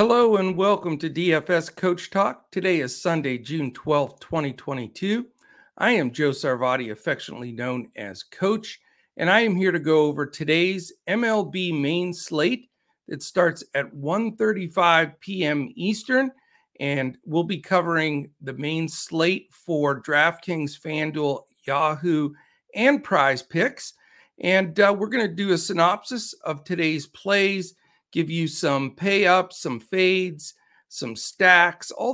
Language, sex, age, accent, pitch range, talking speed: English, male, 50-69, American, 150-190 Hz, 135 wpm